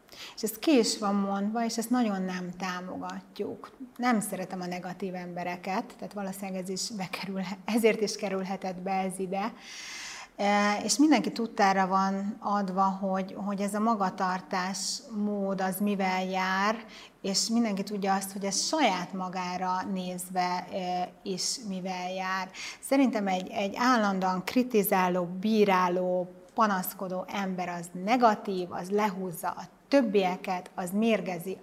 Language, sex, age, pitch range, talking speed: Hungarian, female, 30-49, 185-215 Hz, 125 wpm